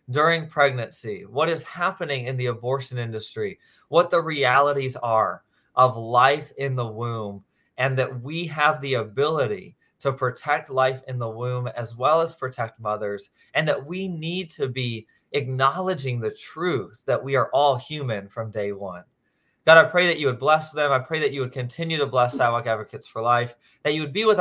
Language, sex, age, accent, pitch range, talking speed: English, male, 20-39, American, 120-150 Hz, 190 wpm